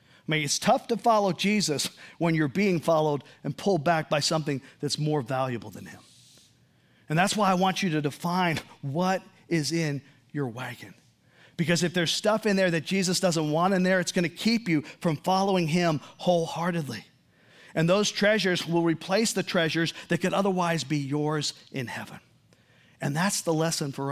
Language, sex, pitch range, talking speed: English, male, 145-195 Hz, 185 wpm